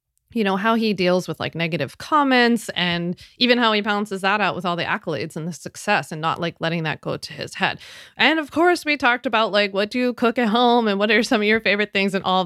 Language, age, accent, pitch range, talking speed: English, 20-39, American, 180-220 Hz, 265 wpm